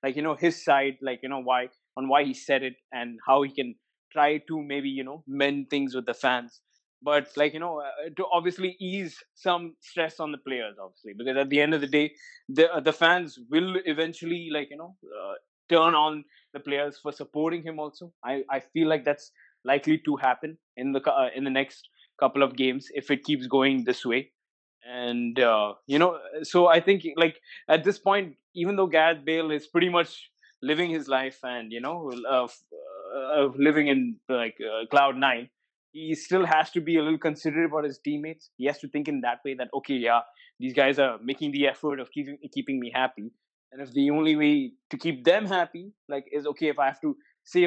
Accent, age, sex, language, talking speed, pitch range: Indian, 20-39, male, English, 215 wpm, 135-165 Hz